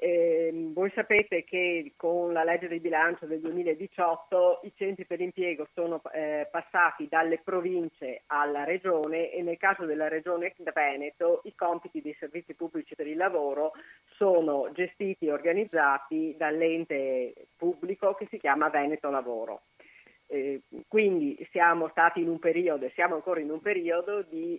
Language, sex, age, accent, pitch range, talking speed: Italian, female, 40-59, native, 155-190 Hz, 145 wpm